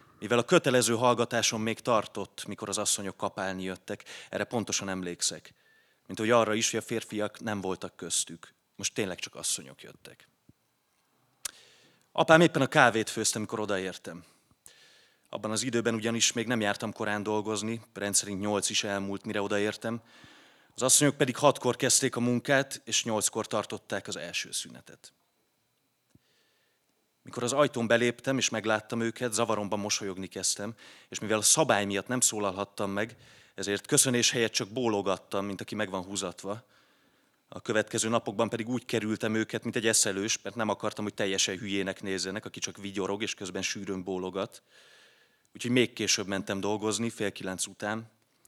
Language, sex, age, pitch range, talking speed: Hungarian, male, 30-49, 100-120 Hz, 155 wpm